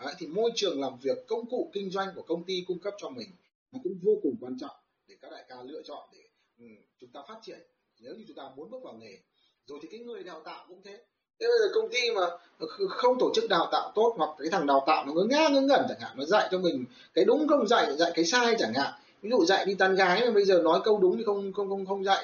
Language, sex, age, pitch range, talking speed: Vietnamese, male, 20-39, 180-285 Hz, 285 wpm